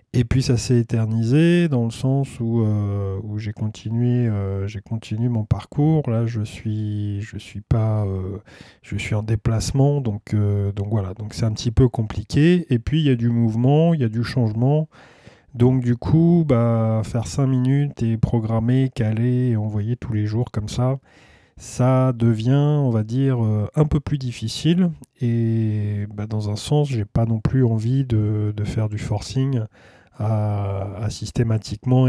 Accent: French